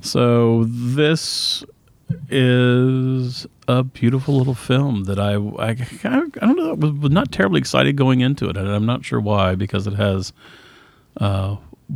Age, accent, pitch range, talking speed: 40-59, American, 95-125 Hz, 140 wpm